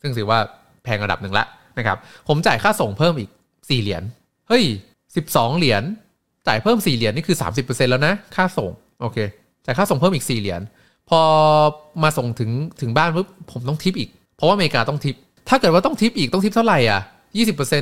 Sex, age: male, 20-39